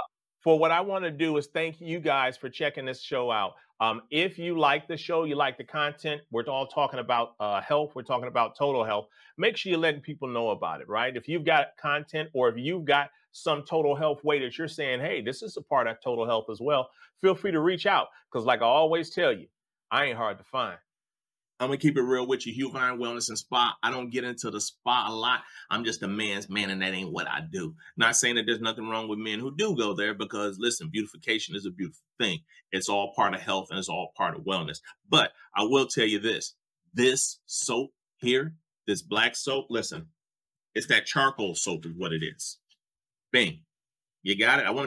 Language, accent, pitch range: English, American, 115-155 Hz